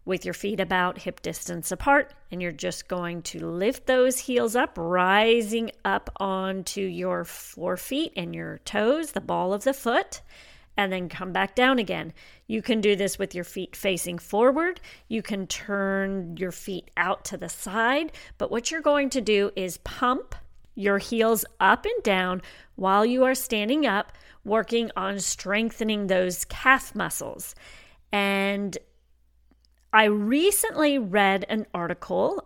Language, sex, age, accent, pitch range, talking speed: English, female, 40-59, American, 185-235 Hz, 155 wpm